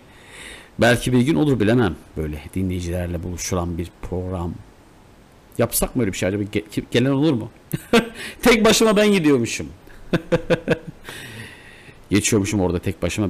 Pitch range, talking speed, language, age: 90-125 Hz, 130 wpm, Turkish, 50-69